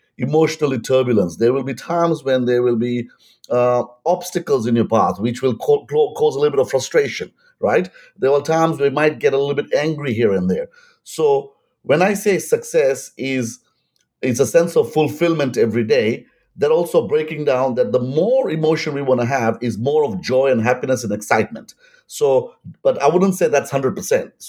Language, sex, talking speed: English, male, 195 wpm